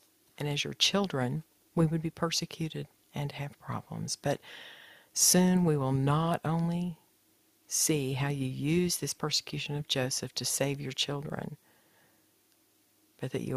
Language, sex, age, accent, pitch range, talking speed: English, female, 50-69, American, 130-160 Hz, 140 wpm